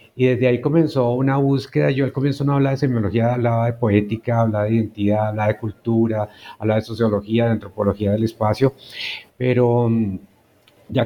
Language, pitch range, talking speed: Spanish, 105-125 Hz, 170 wpm